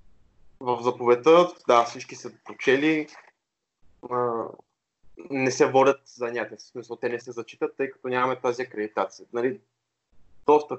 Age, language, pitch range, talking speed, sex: 20-39, Bulgarian, 110-130 Hz, 120 wpm, male